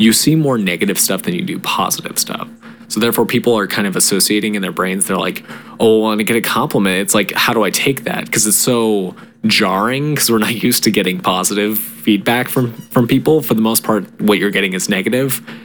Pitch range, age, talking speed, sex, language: 100-125 Hz, 20-39, 230 wpm, male, English